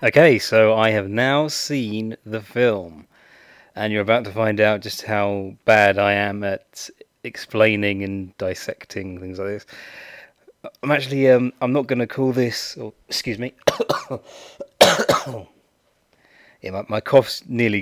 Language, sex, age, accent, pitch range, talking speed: English, male, 30-49, British, 100-125 Hz, 145 wpm